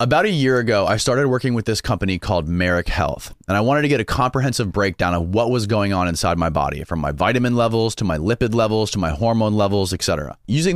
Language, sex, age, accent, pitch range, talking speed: English, male, 30-49, American, 95-135 Hz, 240 wpm